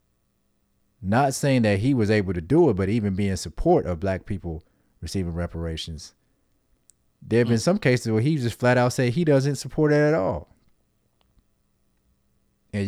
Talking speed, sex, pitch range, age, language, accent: 170 wpm, male, 95-115 Hz, 30-49, English, American